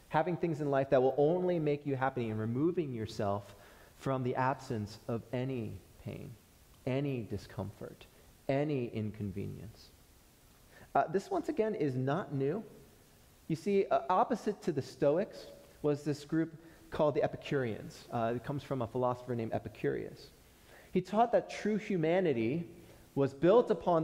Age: 30-49